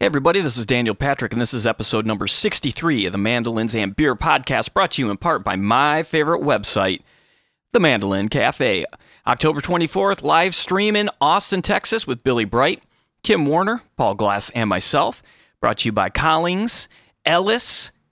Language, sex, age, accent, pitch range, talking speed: English, male, 30-49, American, 115-165 Hz, 170 wpm